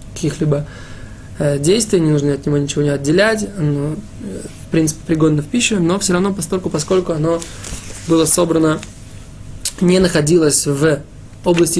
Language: Russian